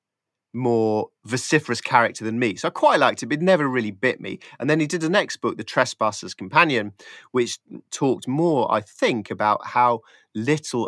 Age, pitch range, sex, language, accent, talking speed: 30-49, 110-150 Hz, male, English, British, 190 wpm